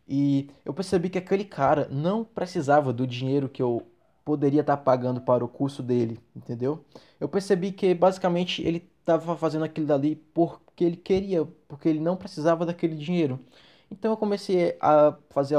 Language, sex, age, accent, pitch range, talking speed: Portuguese, male, 20-39, Brazilian, 130-165 Hz, 165 wpm